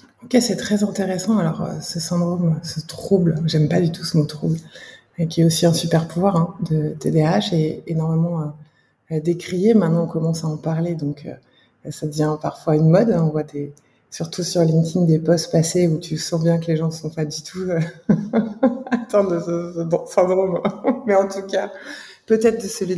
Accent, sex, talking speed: French, female, 200 wpm